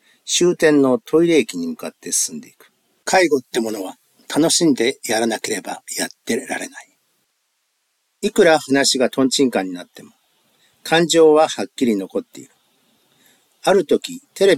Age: 50-69